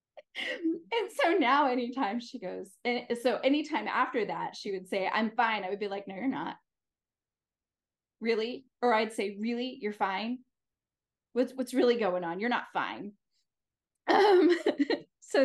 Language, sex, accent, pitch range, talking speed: English, female, American, 175-235 Hz, 155 wpm